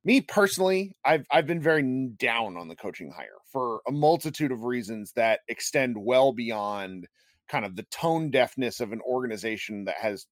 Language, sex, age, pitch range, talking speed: English, male, 30-49, 115-150 Hz, 175 wpm